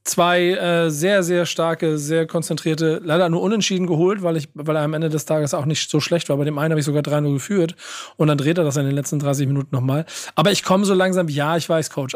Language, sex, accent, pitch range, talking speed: German, male, German, 155-180 Hz, 255 wpm